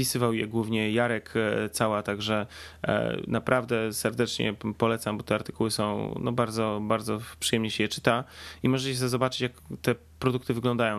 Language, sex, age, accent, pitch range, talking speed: Polish, male, 20-39, native, 110-125 Hz, 155 wpm